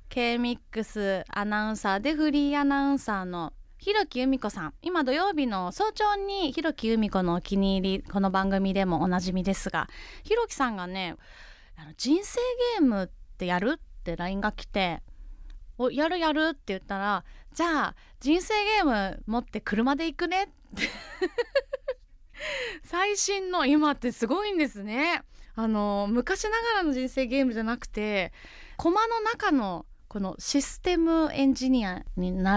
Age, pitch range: 20-39, 195-315 Hz